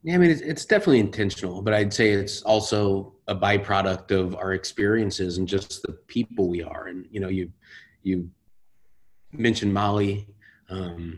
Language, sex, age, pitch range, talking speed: English, male, 30-49, 95-105 Hz, 160 wpm